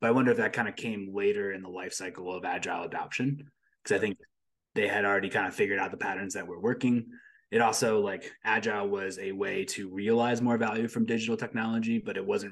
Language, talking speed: English, 230 wpm